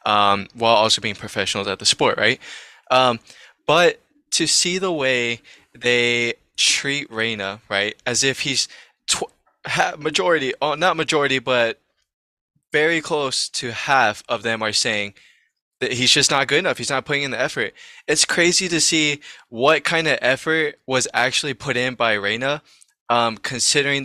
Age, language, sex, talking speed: 20-39, English, male, 160 wpm